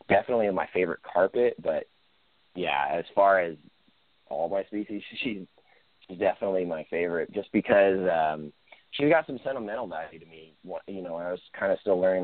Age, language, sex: 30-49, English, male